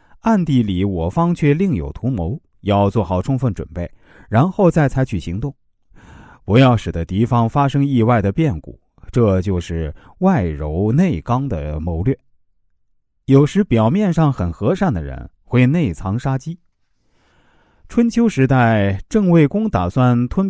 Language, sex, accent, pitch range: Chinese, male, native, 95-155 Hz